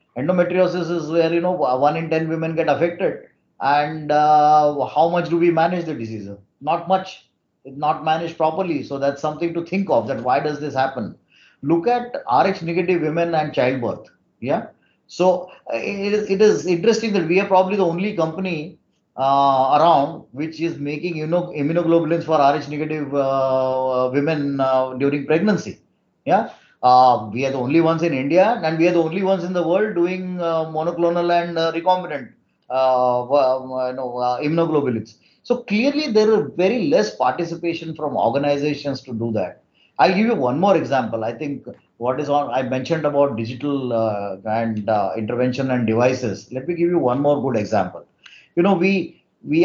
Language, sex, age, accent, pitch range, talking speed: English, male, 30-49, Indian, 130-175 Hz, 175 wpm